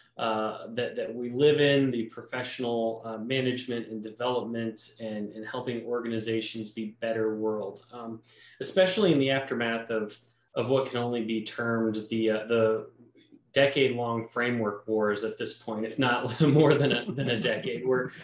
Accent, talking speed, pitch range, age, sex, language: American, 160 wpm, 115-135 Hz, 20-39, male, English